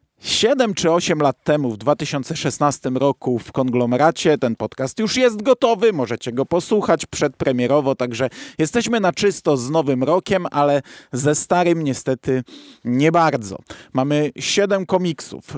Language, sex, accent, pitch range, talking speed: Polish, male, native, 140-175 Hz, 135 wpm